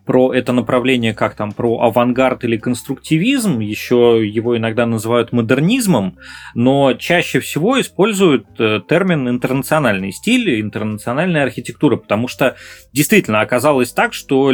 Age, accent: 30-49, native